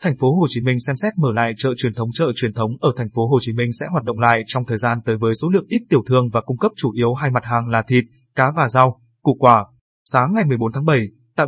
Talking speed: 295 wpm